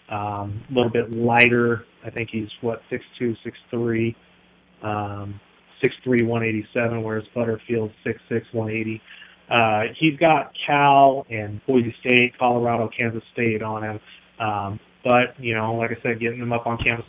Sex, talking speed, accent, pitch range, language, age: male, 150 wpm, American, 115-130 Hz, English, 20-39